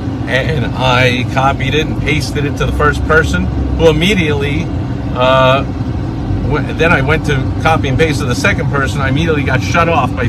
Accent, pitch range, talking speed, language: American, 120-140 Hz, 180 wpm, English